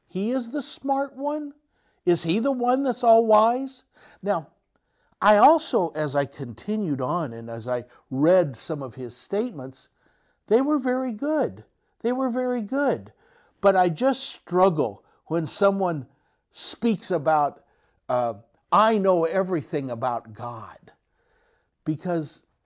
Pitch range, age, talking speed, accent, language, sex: 145-245 Hz, 60-79, 130 wpm, American, English, male